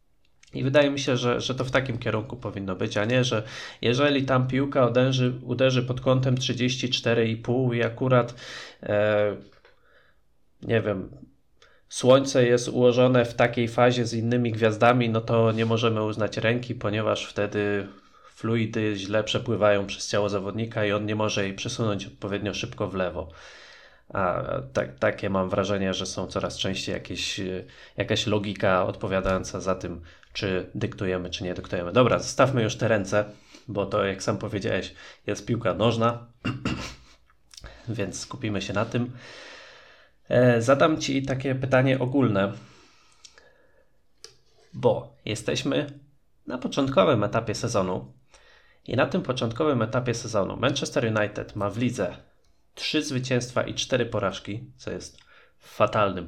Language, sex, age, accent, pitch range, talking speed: Polish, male, 20-39, native, 100-125 Hz, 140 wpm